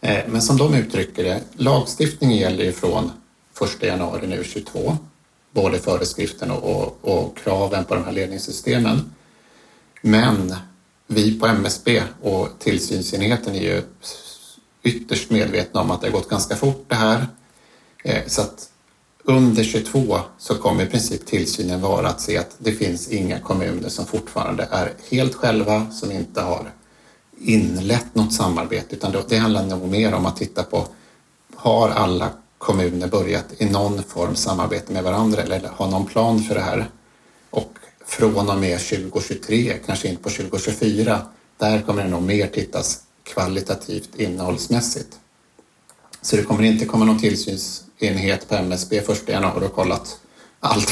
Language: Swedish